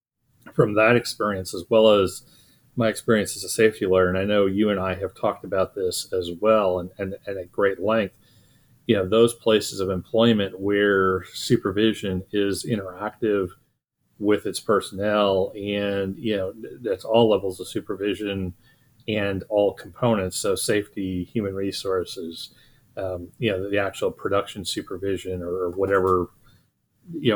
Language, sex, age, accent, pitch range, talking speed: English, male, 40-59, American, 95-110 Hz, 150 wpm